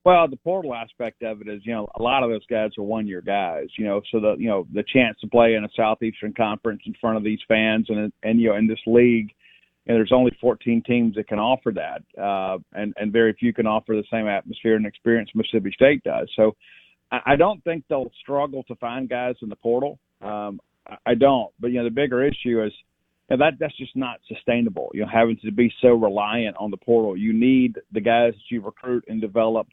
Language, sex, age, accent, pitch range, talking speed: English, male, 40-59, American, 110-125 Hz, 235 wpm